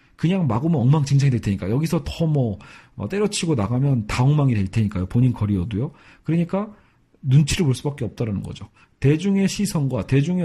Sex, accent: male, native